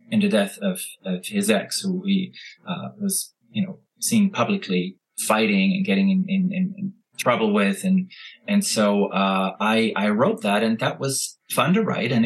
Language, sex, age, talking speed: English, male, 30-49, 185 wpm